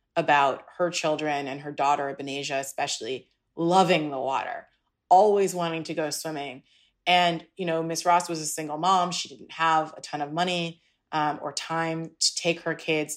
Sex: female